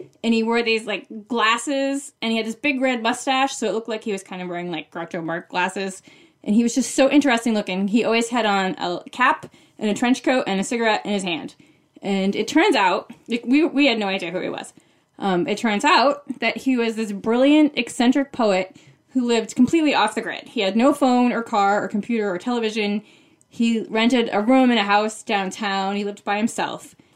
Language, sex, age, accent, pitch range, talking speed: English, female, 20-39, American, 195-245 Hz, 220 wpm